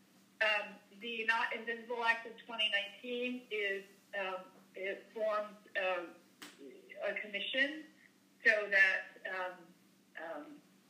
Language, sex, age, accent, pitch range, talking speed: English, female, 50-69, American, 190-230 Hz, 85 wpm